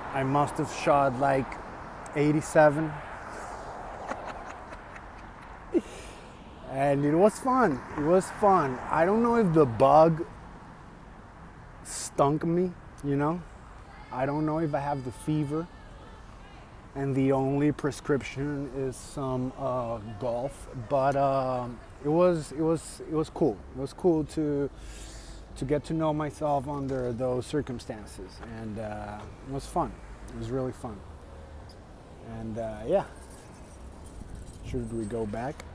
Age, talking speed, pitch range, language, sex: 20-39, 130 wpm, 105-150 Hz, Spanish, male